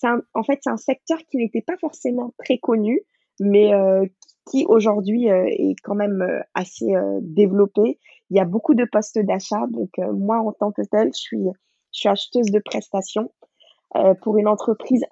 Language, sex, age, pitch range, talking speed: French, female, 20-39, 195-245 Hz, 200 wpm